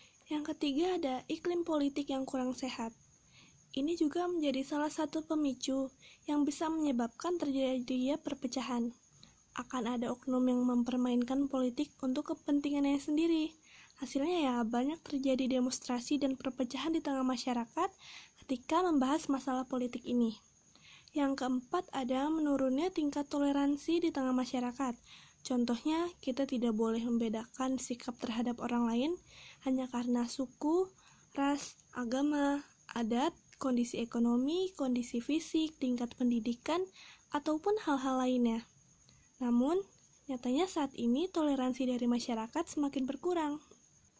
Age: 20-39